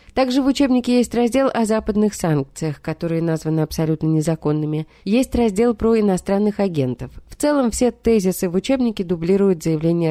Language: Russian